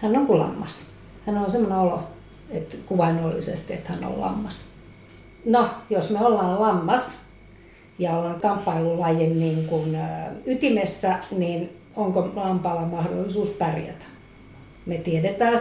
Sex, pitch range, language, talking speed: female, 160-190 Hz, Finnish, 125 wpm